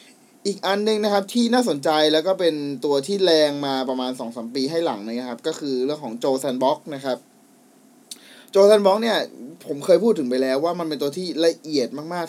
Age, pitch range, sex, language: 20-39, 140-200 Hz, male, Thai